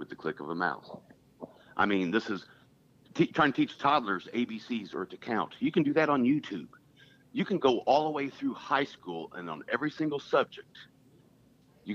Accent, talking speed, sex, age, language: American, 195 wpm, male, 50-69, English